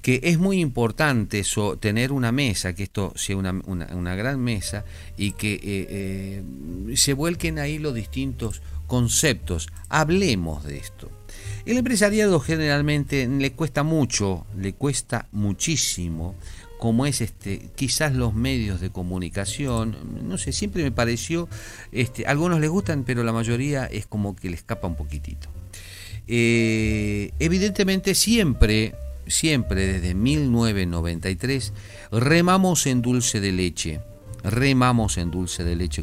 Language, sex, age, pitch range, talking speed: Spanish, male, 50-69, 95-130 Hz, 135 wpm